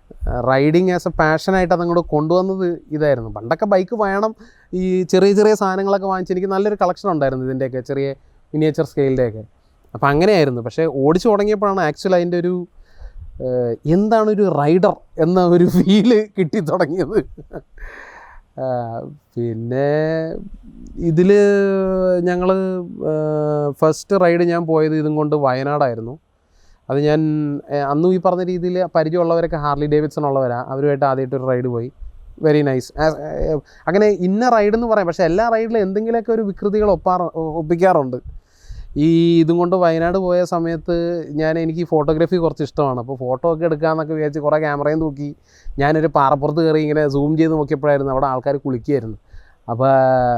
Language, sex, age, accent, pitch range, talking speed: Malayalam, male, 30-49, native, 140-185 Hz, 125 wpm